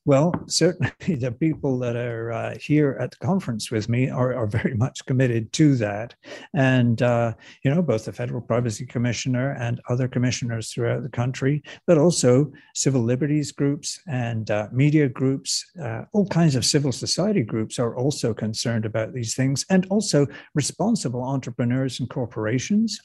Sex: male